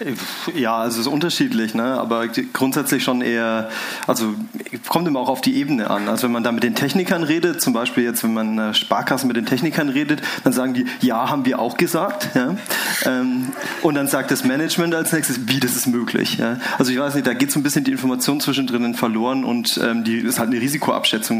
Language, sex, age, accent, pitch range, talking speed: German, male, 30-49, German, 120-155 Hz, 210 wpm